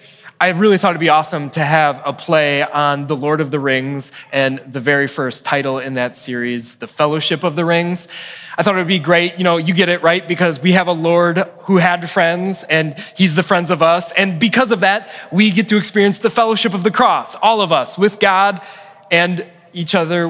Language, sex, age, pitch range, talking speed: English, male, 20-39, 150-190 Hz, 220 wpm